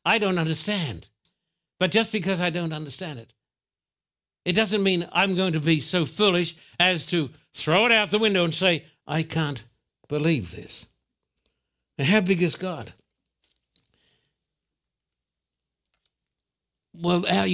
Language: English